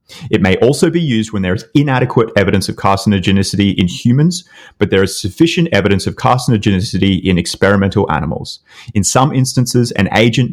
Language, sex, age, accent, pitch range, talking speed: English, male, 30-49, Australian, 95-120 Hz, 165 wpm